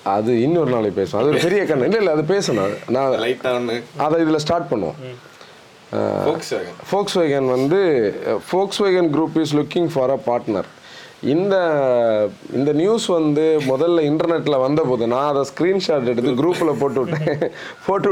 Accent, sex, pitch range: native, male, 130-170 Hz